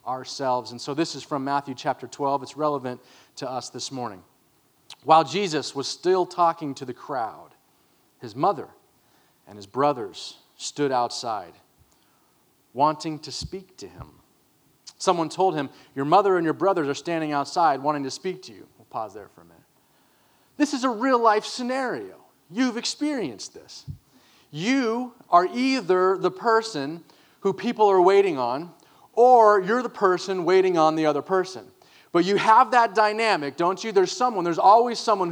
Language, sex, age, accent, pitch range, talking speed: English, male, 30-49, American, 160-255 Hz, 165 wpm